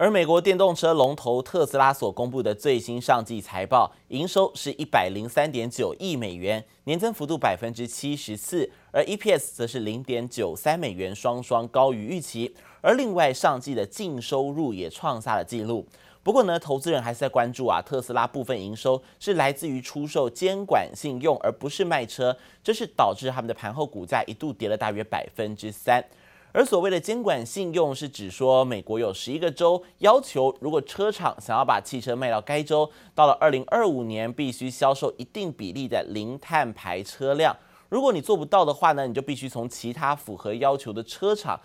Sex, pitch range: male, 120-155 Hz